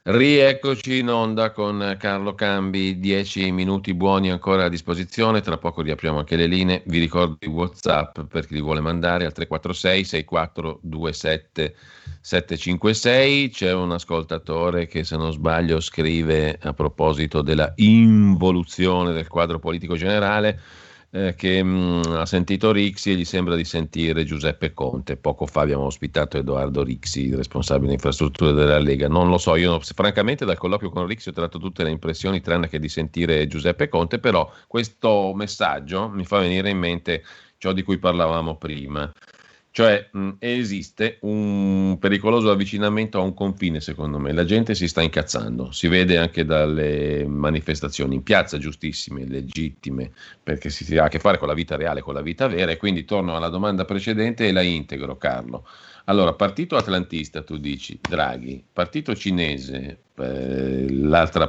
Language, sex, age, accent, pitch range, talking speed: Italian, male, 40-59, native, 75-95 Hz, 155 wpm